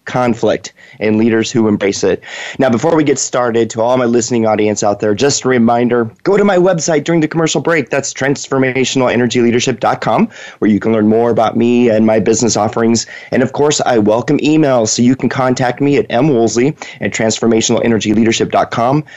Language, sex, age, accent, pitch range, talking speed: English, male, 30-49, American, 115-145 Hz, 180 wpm